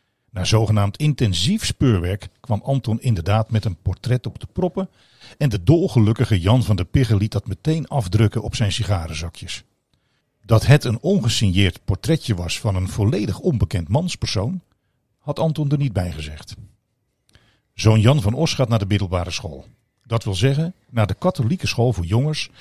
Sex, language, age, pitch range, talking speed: male, Dutch, 50-69, 100-130 Hz, 165 wpm